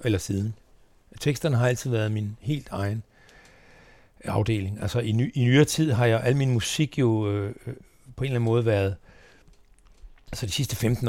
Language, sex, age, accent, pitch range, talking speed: Danish, male, 60-79, native, 100-125 Hz, 190 wpm